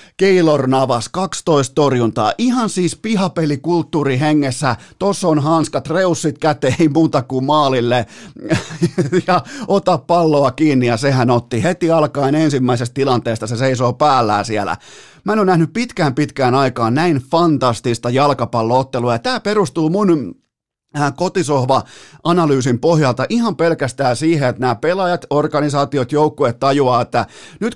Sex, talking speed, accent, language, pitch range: male, 125 wpm, native, Finnish, 125-165 Hz